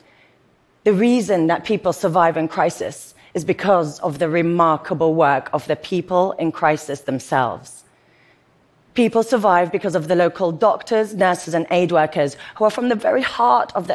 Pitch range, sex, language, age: 150-200 Hz, female, Korean, 30-49